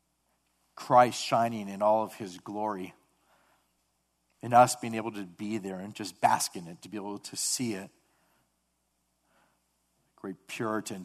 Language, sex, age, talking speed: English, male, 40-59, 145 wpm